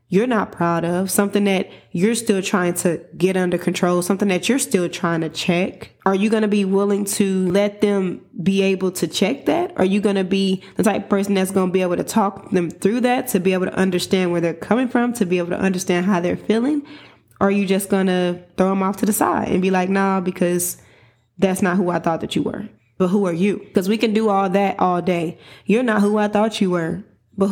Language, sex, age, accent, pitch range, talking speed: English, female, 20-39, American, 185-220 Hz, 250 wpm